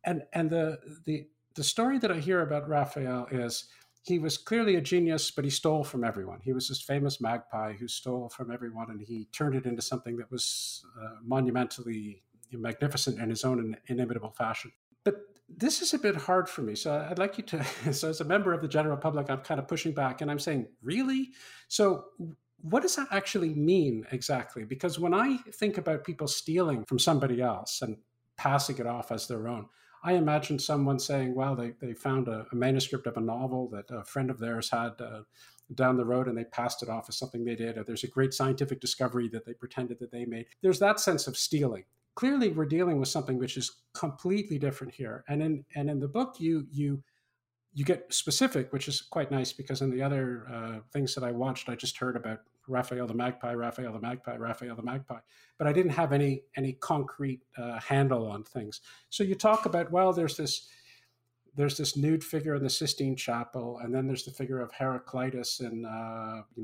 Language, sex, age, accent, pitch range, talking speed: English, male, 50-69, American, 120-155 Hz, 210 wpm